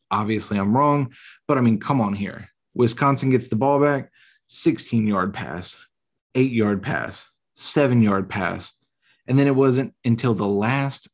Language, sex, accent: English, male, American